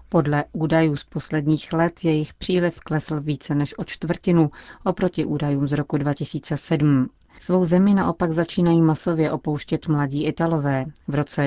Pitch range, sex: 145-160 Hz, female